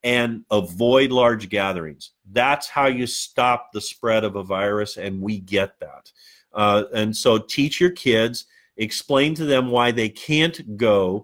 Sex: male